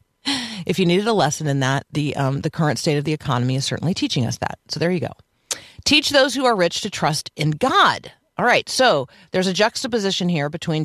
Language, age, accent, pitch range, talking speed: English, 40-59, American, 145-210 Hz, 225 wpm